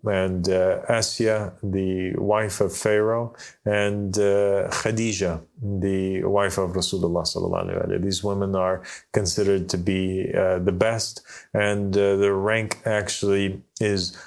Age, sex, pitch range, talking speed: 30-49, male, 95-105 Hz, 120 wpm